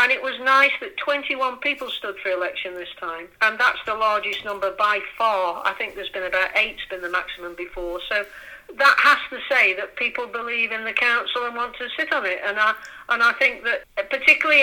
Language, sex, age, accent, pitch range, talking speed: English, female, 50-69, British, 200-255 Hz, 215 wpm